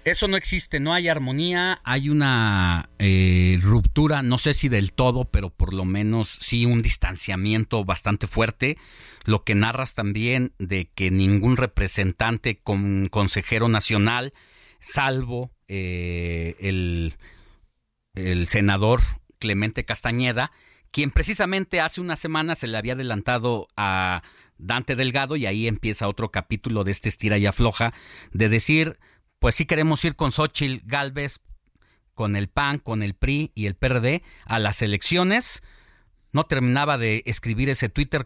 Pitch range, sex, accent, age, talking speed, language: 105-140 Hz, male, Mexican, 40-59, 145 wpm, Spanish